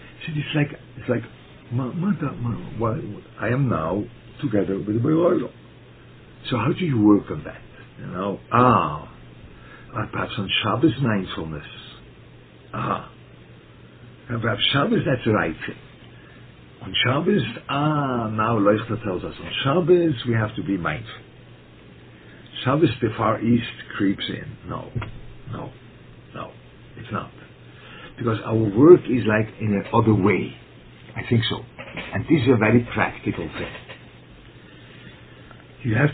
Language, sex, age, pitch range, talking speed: English, male, 60-79, 100-130 Hz, 130 wpm